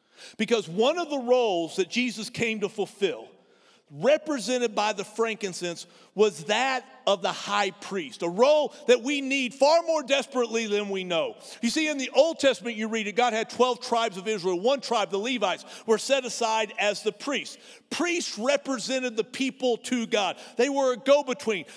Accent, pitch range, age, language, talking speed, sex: American, 220-275 Hz, 50-69, English, 180 wpm, male